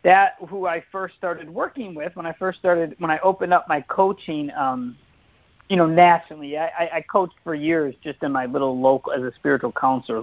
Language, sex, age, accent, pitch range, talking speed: English, male, 50-69, American, 155-210 Hz, 205 wpm